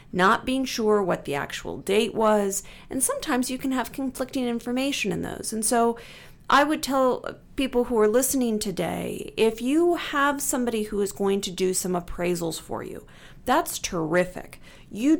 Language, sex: English, female